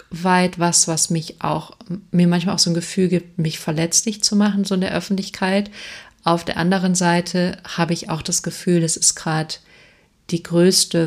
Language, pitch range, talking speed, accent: German, 160-185 Hz, 185 wpm, German